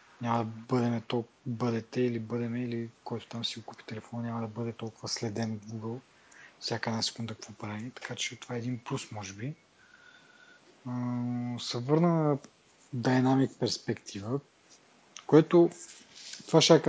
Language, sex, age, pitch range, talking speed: Bulgarian, male, 20-39, 115-140 Hz, 135 wpm